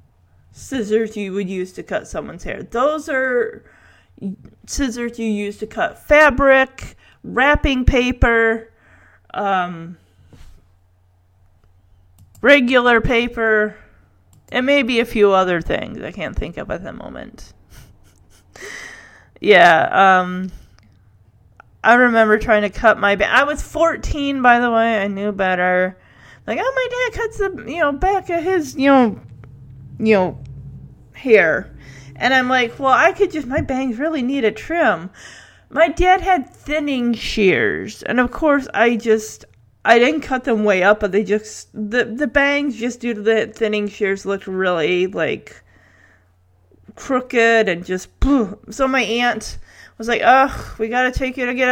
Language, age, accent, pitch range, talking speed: English, 30-49, American, 180-260 Hz, 145 wpm